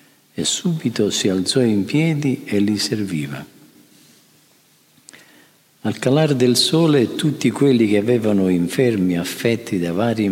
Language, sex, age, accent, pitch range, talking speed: Italian, male, 50-69, native, 95-130 Hz, 120 wpm